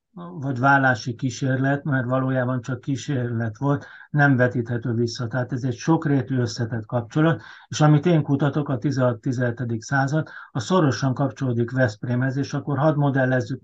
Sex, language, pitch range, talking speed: male, Hungarian, 125-145 Hz, 140 wpm